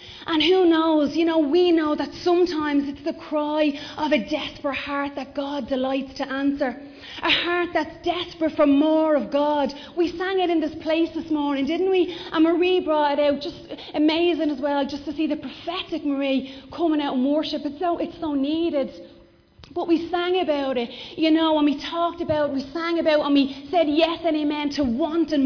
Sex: female